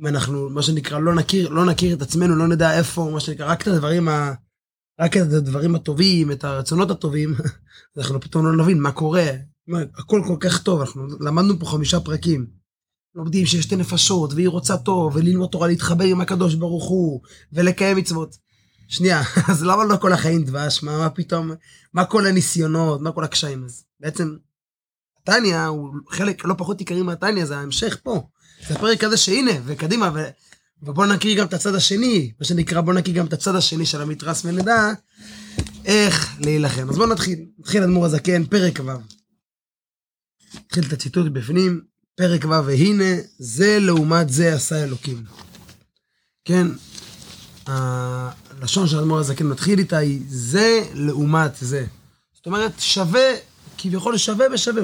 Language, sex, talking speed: Hebrew, male, 160 wpm